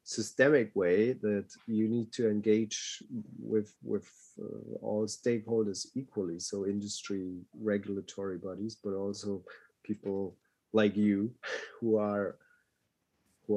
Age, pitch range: 30-49, 100-125 Hz